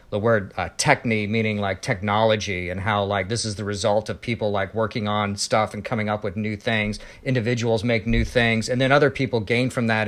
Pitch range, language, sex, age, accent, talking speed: 100-125 Hz, English, male, 40-59, American, 220 wpm